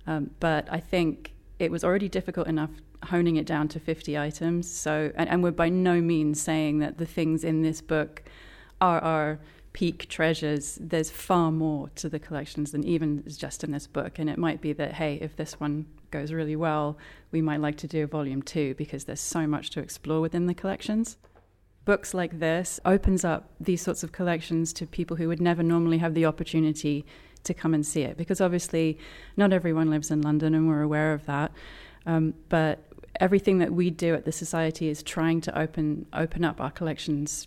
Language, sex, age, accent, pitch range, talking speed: English, female, 30-49, British, 150-170 Hz, 200 wpm